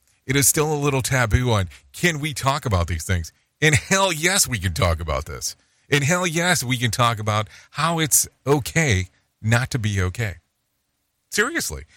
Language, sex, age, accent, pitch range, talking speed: English, male, 40-59, American, 90-140 Hz, 180 wpm